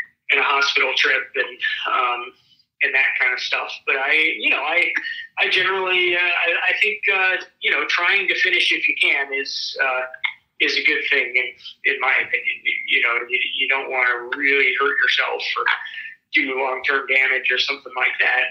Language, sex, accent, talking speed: English, male, American, 190 wpm